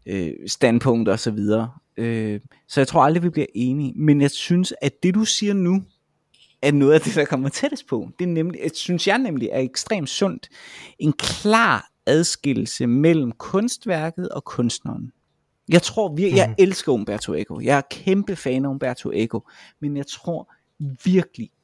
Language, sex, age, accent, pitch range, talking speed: Danish, male, 30-49, native, 120-165 Hz, 170 wpm